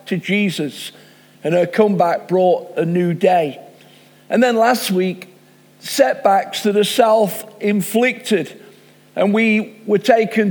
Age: 50-69